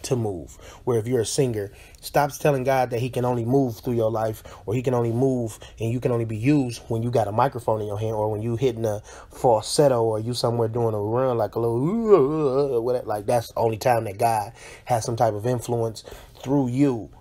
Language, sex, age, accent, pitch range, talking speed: English, male, 20-39, American, 115-145 Hz, 230 wpm